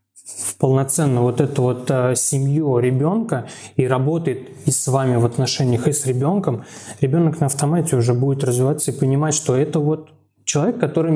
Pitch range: 125-150 Hz